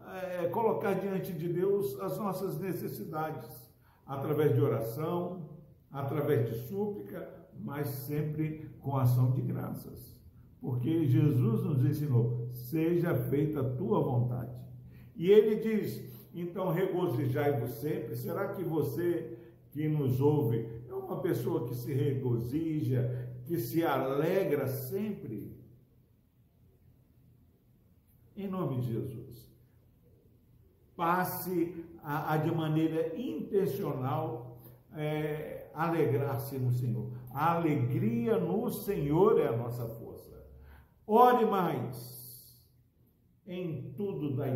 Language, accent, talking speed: Portuguese, Brazilian, 100 wpm